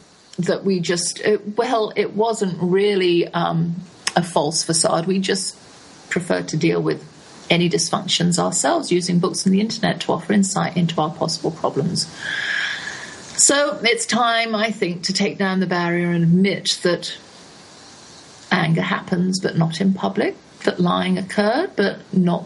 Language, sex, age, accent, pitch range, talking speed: English, female, 40-59, British, 170-210 Hz, 150 wpm